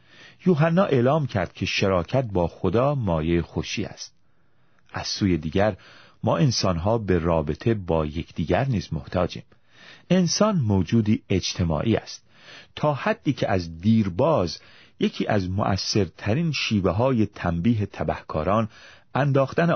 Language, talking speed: Persian, 120 wpm